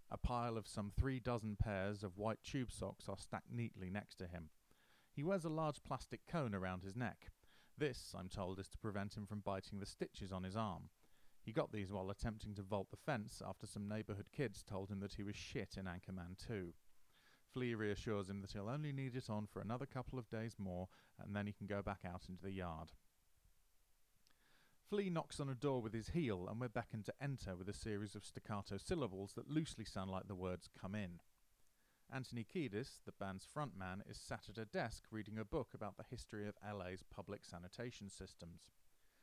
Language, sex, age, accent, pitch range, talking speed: English, male, 30-49, British, 95-120 Hz, 205 wpm